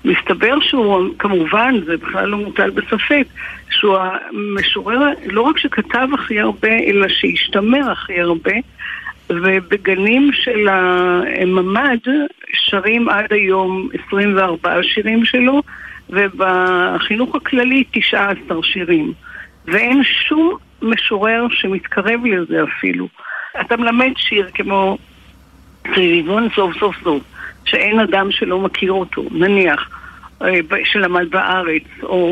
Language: Hebrew